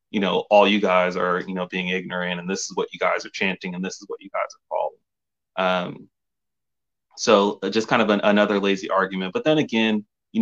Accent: American